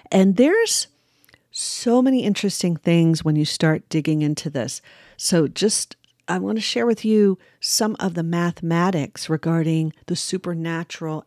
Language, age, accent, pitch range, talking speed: English, 50-69, American, 160-190 Hz, 145 wpm